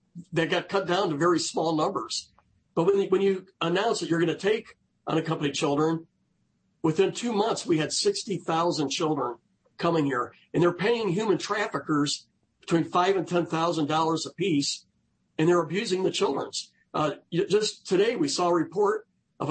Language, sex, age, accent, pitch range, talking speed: English, male, 50-69, American, 155-190 Hz, 160 wpm